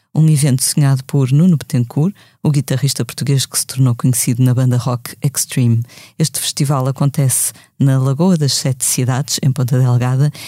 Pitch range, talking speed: 130-155 Hz, 160 wpm